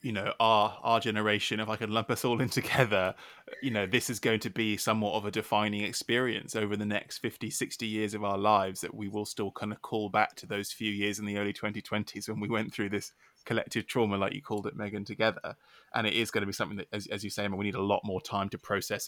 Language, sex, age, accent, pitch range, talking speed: English, male, 20-39, British, 105-115 Hz, 265 wpm